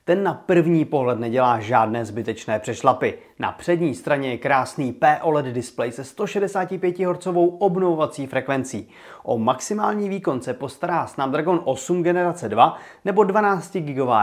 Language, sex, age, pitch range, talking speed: Czech, male, 30-49, 135-180 Hz, 125 wpm